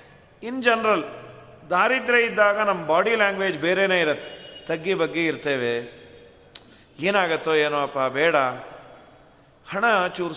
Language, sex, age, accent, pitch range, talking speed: Kannada, male, 40-59, native, 160-230 Hz, 100 wpm